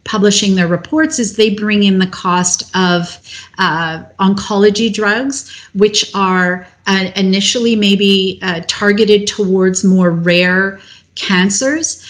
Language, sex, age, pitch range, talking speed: English, female, 40-59, 175-210 Hz, 120 wpm